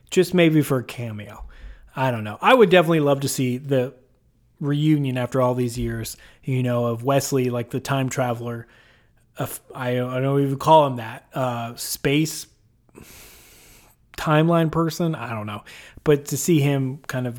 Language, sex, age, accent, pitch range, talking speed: English, male, 30-49, American, 120-155 Hz, 165 wpm